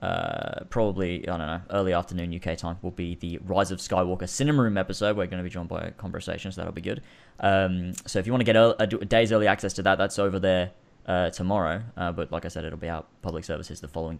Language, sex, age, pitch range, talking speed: English, male, 10-29, 90-110 Hz, 255 wpm